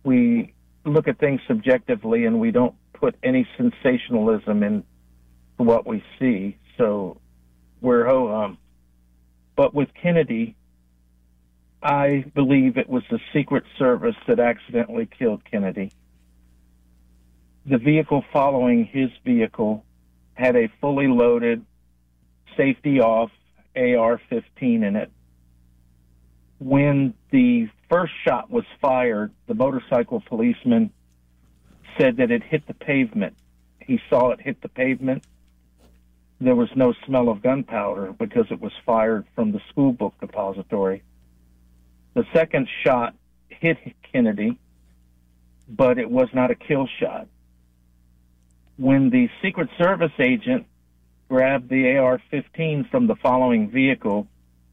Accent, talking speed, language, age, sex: American, 115 wpm, English, 50-69, male